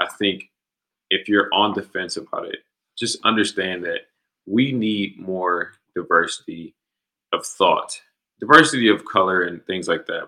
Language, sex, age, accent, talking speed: English, male, 20-39, American, 140 wpm